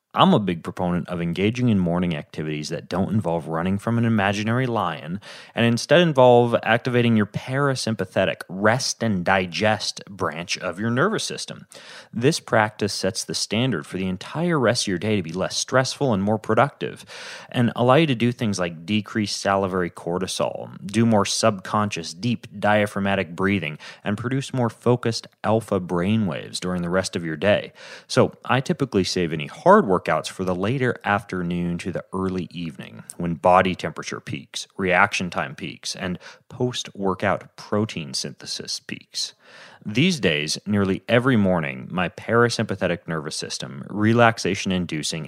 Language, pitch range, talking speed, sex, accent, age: English, 90-120 Hz, 150 wpm, male, American, 30-49